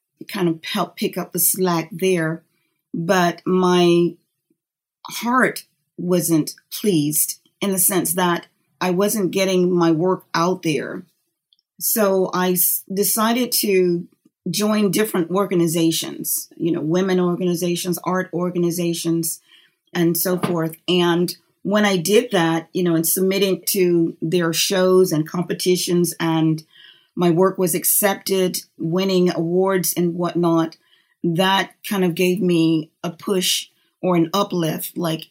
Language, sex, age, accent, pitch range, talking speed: English, female, 40-59, American, 170-190 Hz, 125 wpm